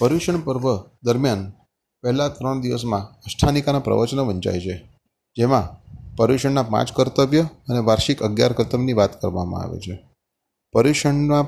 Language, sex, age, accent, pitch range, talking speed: Gujarati, male, 30-49, native, 105-135 Hz, 120 wpm